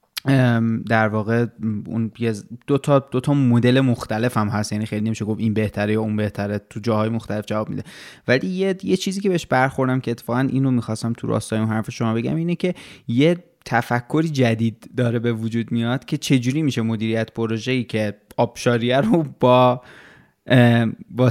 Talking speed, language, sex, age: 165 wpm, Persian, male, 20-39